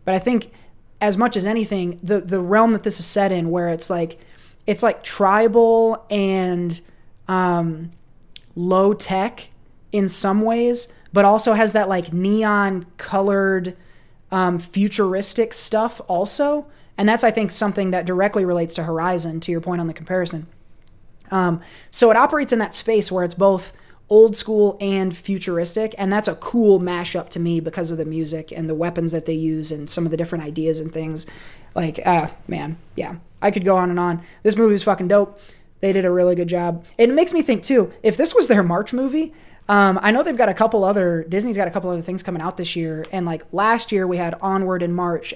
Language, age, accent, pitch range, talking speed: English, 20-39, American, 170-210 Hz, 205 wpm